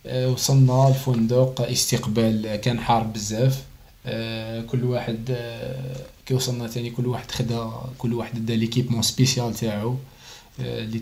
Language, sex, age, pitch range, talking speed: Arabic, male, 20-39, 115-135 Hz, 110 wpm